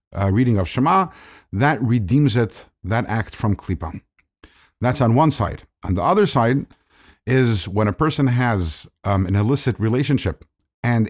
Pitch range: 110-145 Hz